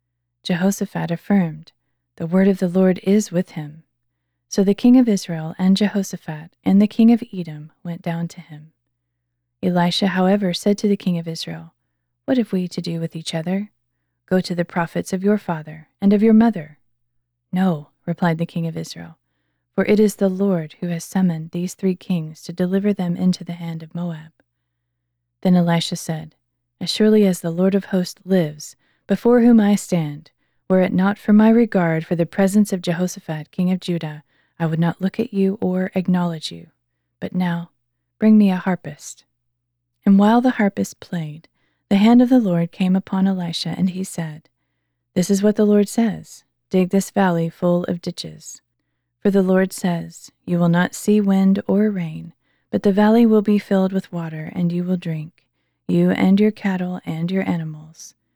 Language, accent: English, American